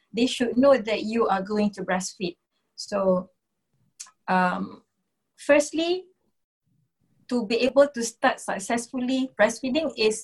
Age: 20-39